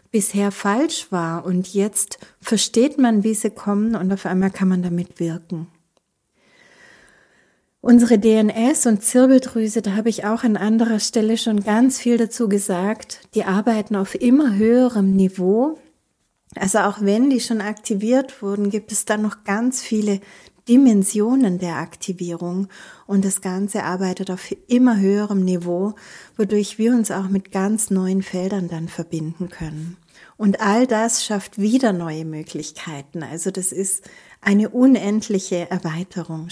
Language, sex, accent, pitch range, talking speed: German, female, German, 180-220 Hz, 145 wpm